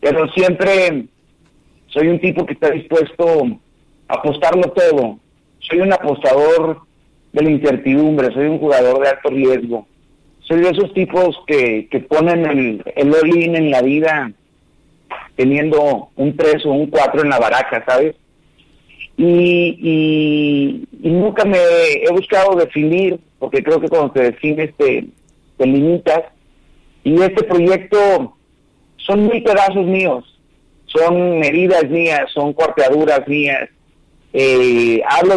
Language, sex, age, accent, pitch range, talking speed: Spanish, male, 50-69, Mexican, 140-180 Hz, 135 wpm